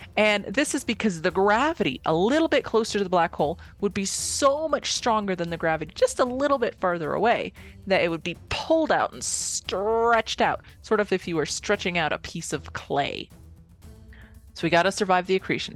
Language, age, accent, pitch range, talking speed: English, 30-49, American, 165-245 Hz, 210 wpm